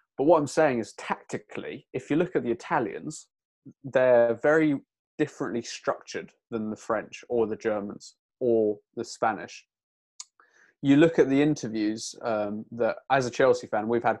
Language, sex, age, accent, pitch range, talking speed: English, male, 20-39, British, 115-140 Hz, 160 wpm